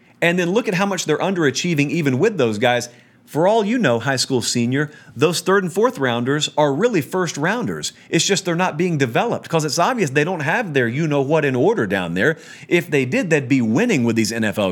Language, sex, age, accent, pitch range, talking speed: English, male, 40-59, American, 120-160 Hz, 225 wpm